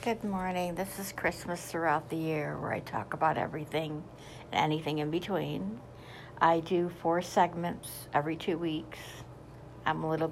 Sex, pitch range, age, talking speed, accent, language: female, 145-175 Hz, 60-79, 155 wpm, American, English